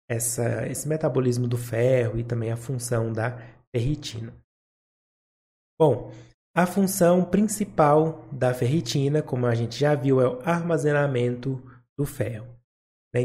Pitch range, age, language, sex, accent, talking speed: 120-155 Hz, 20-39, Portuguese, male, Brazilian, 120 wpm